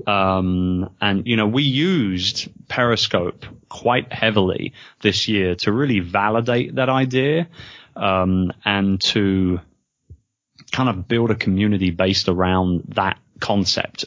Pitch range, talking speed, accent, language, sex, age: 95-115 Hz, 120 wpm, British, English, male, 30-49